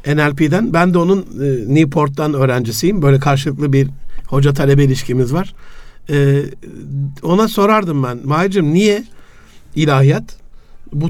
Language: Turkish